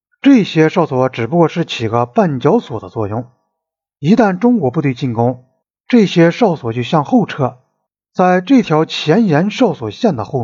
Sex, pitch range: male, 130-205 Hz